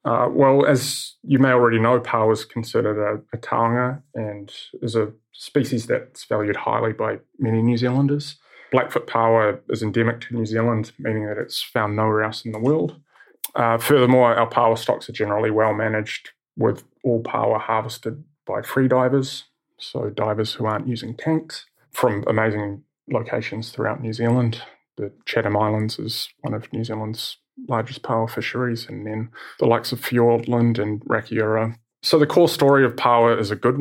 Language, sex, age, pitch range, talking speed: English, male, 20-39, 110-125 Hz, 170 wpm